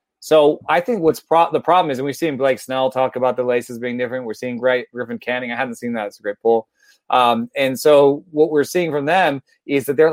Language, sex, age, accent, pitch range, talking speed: English, male, 30-49, American, 125-165 Hz, 255 wpm